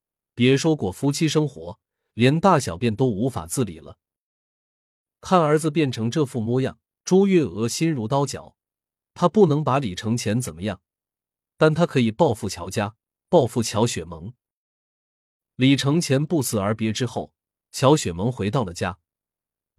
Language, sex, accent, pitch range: Chinese, male, native, 105-155 Hz